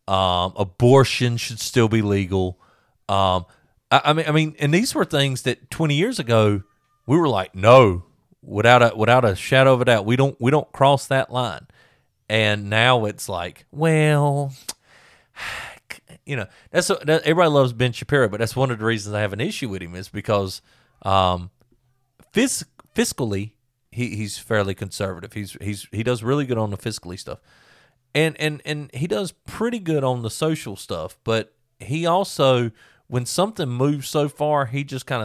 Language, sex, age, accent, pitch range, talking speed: English, male, 40-59, American, 100-135 Hz, 175 wpm